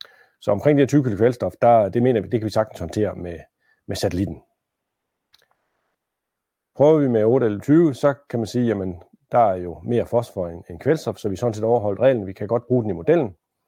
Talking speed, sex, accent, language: 225 wpm, male, native, Danish